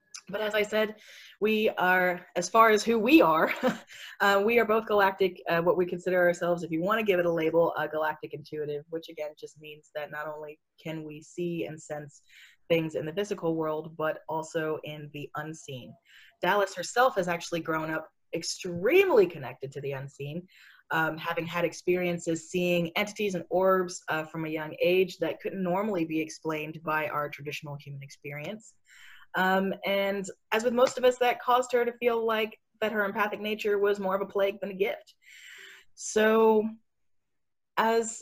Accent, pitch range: American, 160-205 Hz